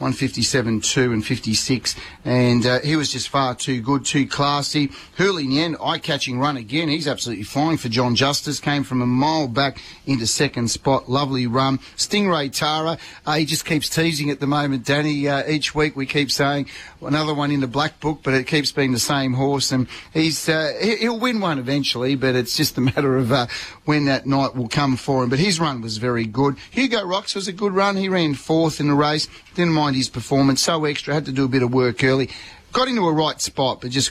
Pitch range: 125-150 Hz